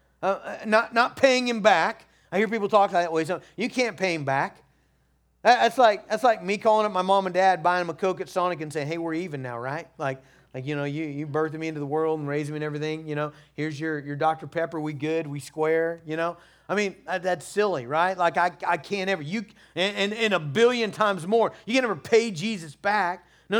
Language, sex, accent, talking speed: English, male, American, 245 wpm